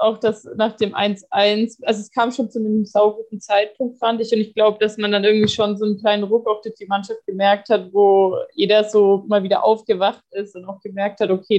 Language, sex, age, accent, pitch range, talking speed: German, female, 20-39, German, 195-220 Hz, 230 wpm